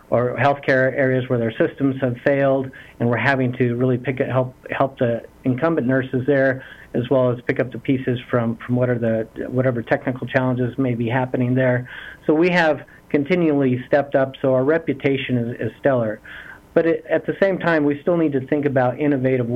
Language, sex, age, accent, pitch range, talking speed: English, male, 50-69, American, 125-140 Hz, 200 wpm